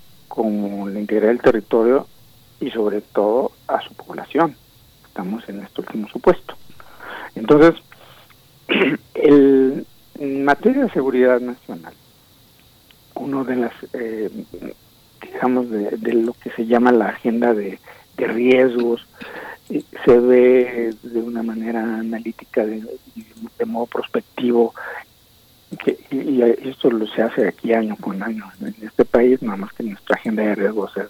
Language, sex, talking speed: Spanish, male, 135 wpm